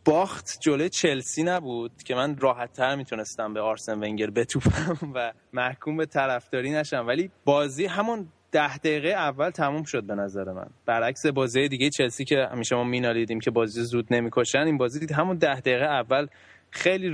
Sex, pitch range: male, 115-145 Hz